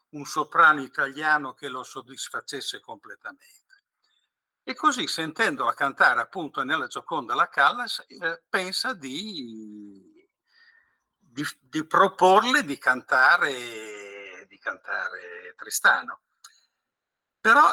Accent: native